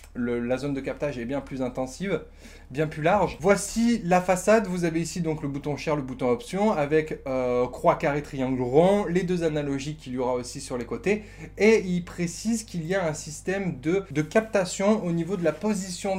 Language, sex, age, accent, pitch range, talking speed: French, male, 20-39, French, 145-190 Hz, 210 wpm